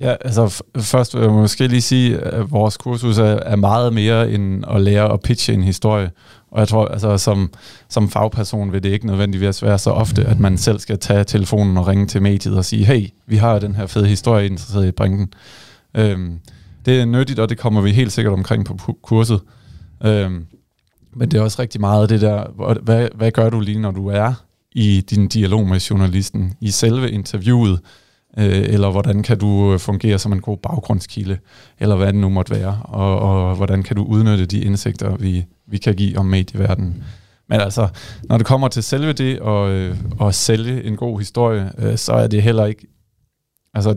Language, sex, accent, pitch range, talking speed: Danish, male, native, 100-115 Hz, 210 wpm